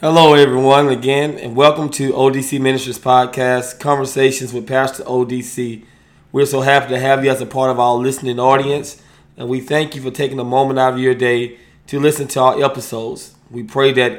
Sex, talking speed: male, 195 wpm